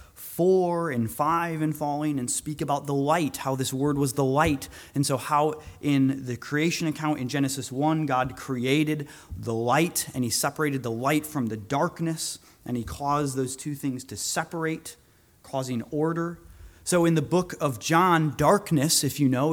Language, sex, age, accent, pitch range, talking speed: English, male, 30-49, American, 135-165 Hz, 180 wpm